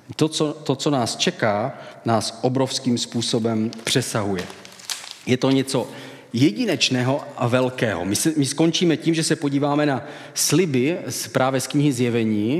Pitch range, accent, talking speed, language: 115-145 Hz, native, 150 wpm, Czech